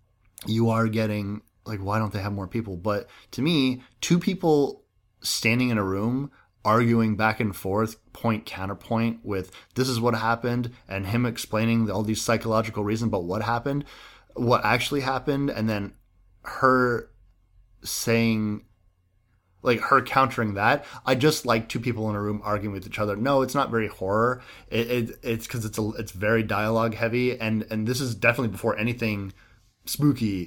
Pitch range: 105-125 Hz